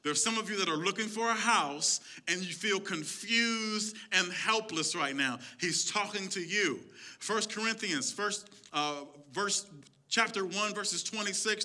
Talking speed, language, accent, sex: 155 wpm, English, American, male